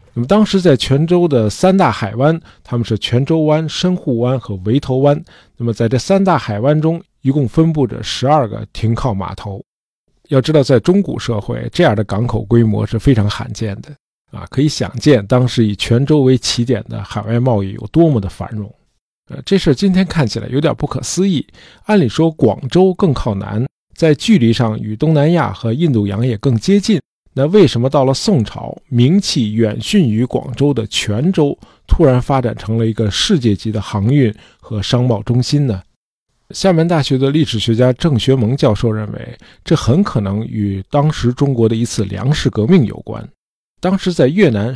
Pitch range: 110-155 Hz